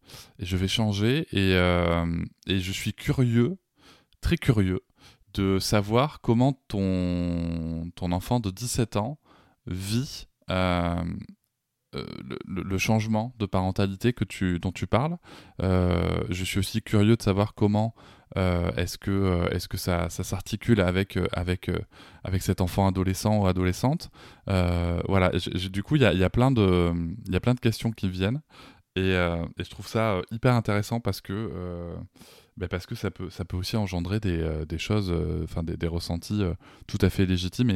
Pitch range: 90-110 Hz